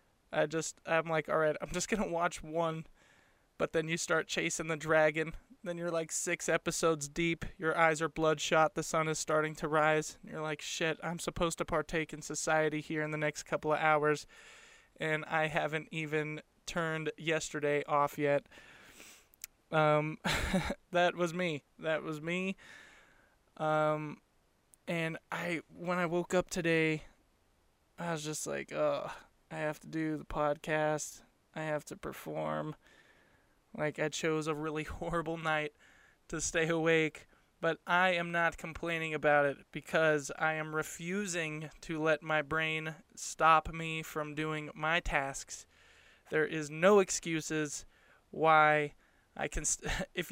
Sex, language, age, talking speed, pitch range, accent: male, English, 20-39, 155 wpm, 155-170 Hz, American